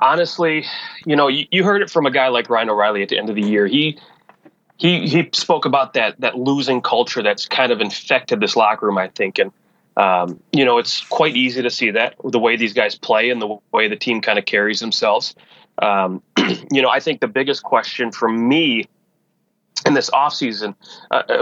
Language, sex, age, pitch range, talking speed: English, male, 30-49, 110-135 Hz, 210 wpm